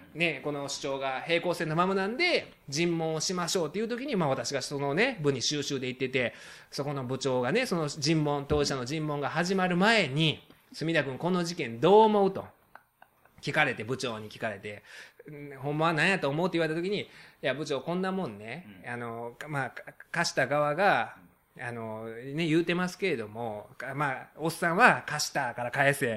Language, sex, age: Japanese, male, 20-39